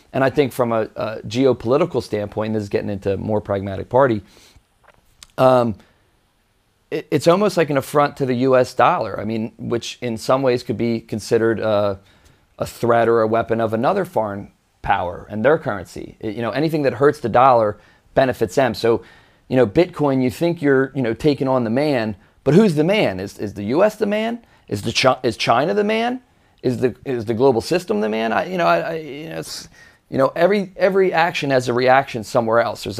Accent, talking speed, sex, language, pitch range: American, 205 wpm, male, English, 110-150 Hz